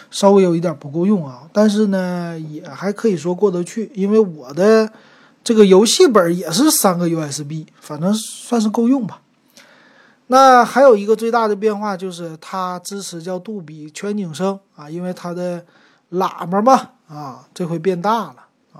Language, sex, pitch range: Chinese, male, 170-220 Hz